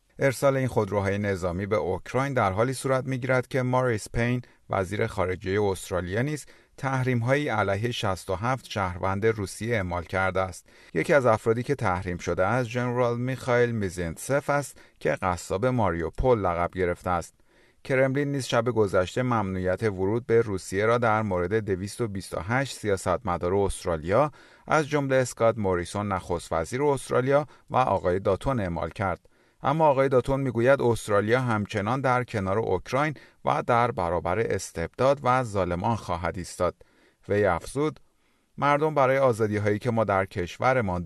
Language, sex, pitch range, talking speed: Persian, male, 95-130 Hz, 140 wpm